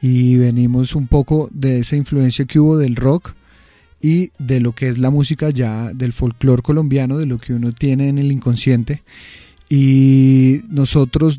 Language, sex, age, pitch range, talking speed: Spanish, male, 30-49, 125-145 Hz, 170 wpm